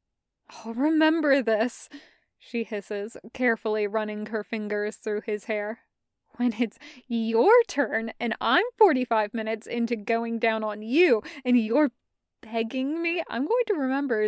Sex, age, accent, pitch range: female, 20-39, American, 220-260 Hz